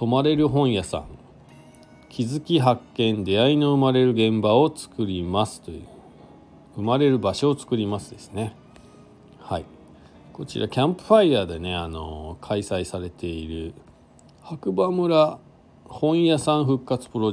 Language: Japanese